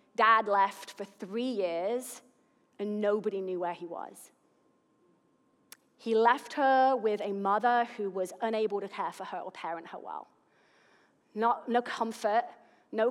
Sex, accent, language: female, British, English